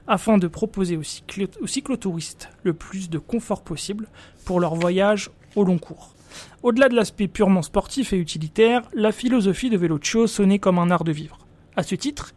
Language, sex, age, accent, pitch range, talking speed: French, male, 30-49, French, 180-230 Hz, 185 wpm